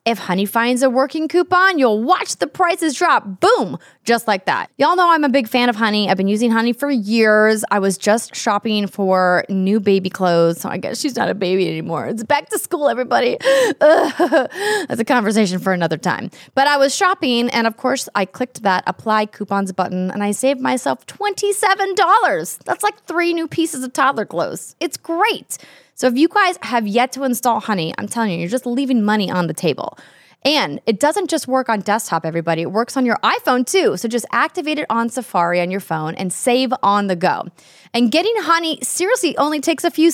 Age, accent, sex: 20-39, American, female